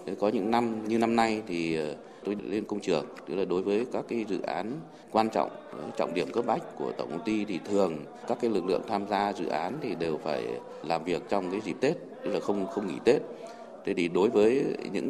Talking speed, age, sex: 235 wpm, 20-39, male